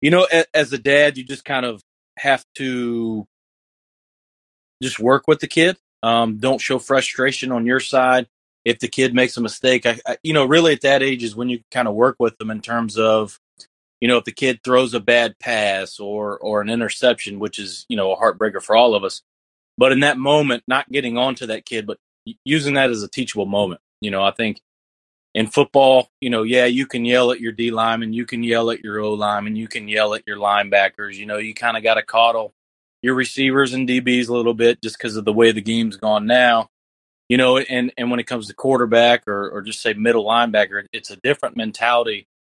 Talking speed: 225 wpm